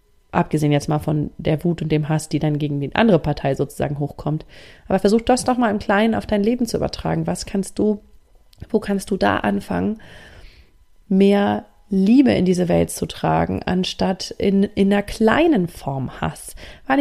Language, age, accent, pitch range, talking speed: German, 30-49, German, 175-220 Hz, 185 wpm